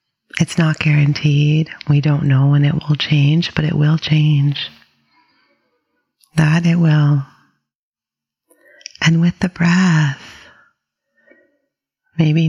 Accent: American